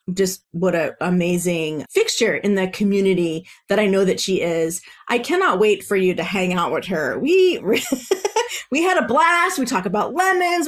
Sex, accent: female, American